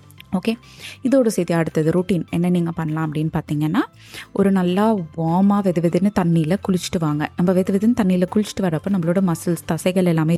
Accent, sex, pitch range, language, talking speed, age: native, female, 165-200 Hz, Tamil, 150 wpm, 20-39